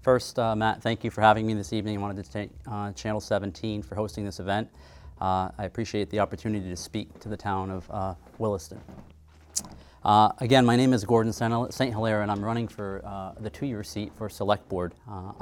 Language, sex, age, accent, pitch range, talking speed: English, male, 30-49, American, 90-105 Hz, 205 wpm